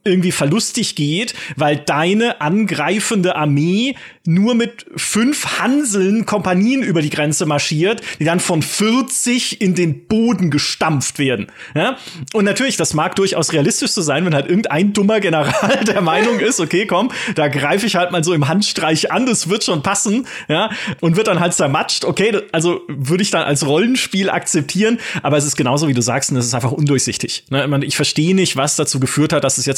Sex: male